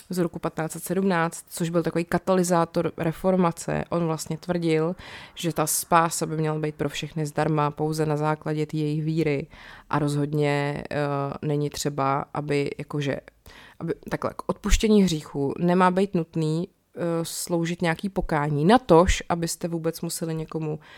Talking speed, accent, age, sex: 140 wpm, native, 20-39, female